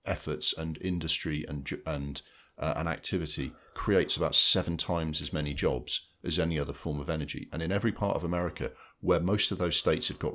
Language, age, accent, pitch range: English, 40-59, British, 75-95 Hz